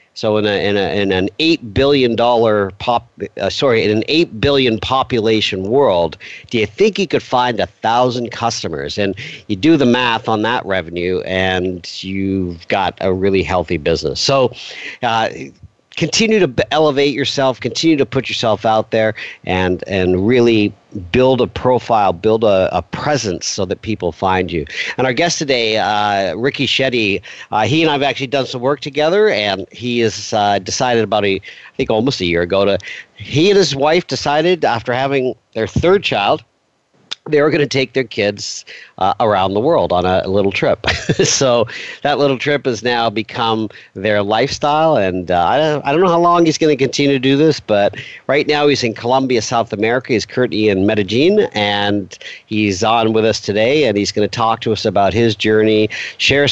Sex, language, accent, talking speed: male, English, American, 190 wpm